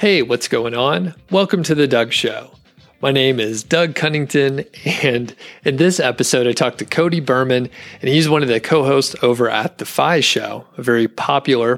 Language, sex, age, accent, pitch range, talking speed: English, male, 40-59, American, 115-145 Hz, 190 wpm